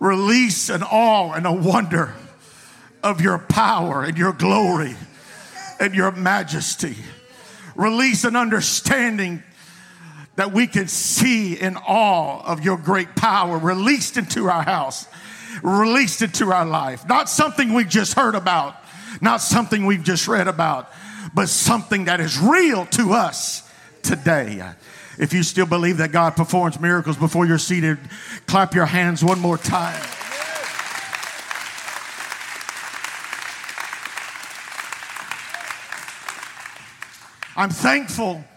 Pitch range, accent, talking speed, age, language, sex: 175-235 Hz, American, 115 wpm, 50-69, English, male